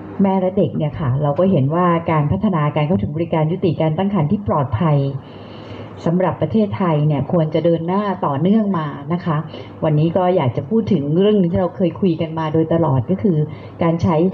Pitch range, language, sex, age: 150-190 Hz, Thai, female, 30-49